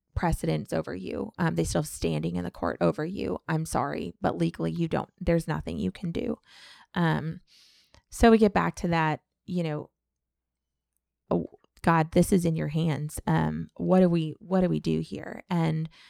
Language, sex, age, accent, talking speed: English, female, 20-39, American, 180 wpm